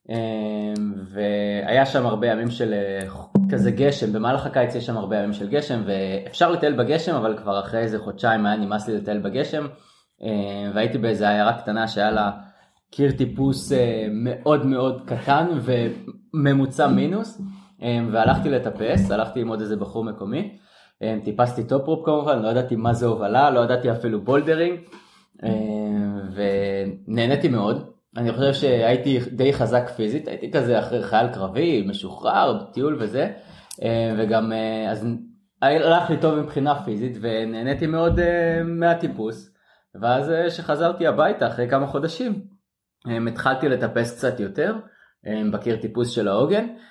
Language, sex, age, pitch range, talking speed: Hebrew, male, 20-39, 110-145 Hz, 140 wpm